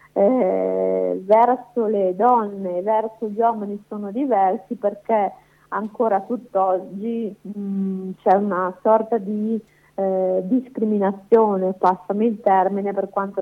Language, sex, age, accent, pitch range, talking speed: Italian, female, 50-69, native, 190-220 Hz, 110 wpm